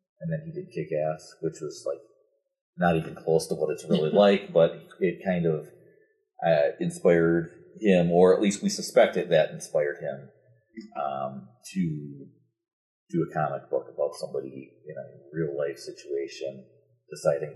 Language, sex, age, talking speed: English, male, 30-49, 155 wpm